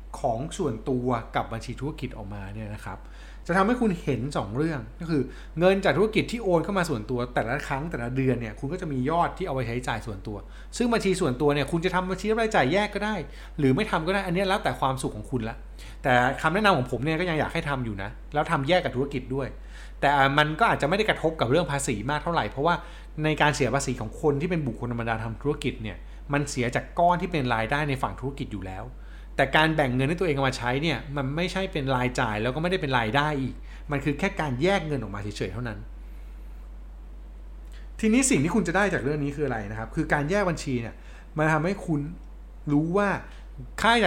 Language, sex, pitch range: Thai, male, 115-165 Hz